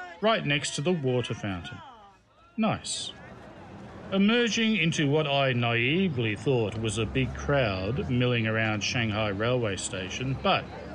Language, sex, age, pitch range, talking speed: English, male, 40-59, 110-175 Hz, 125 wpm